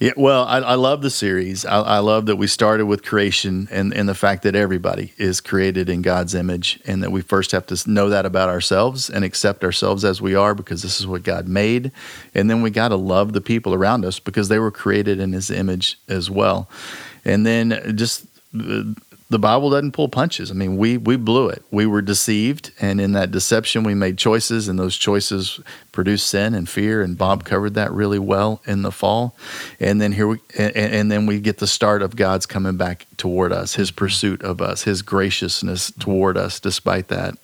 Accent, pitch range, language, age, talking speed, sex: American, 95-110 Hz, English, 40-59, 215 wpm, male